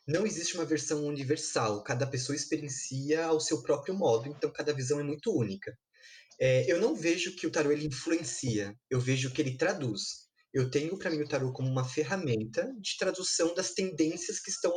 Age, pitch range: 20-39, 135-170 Hz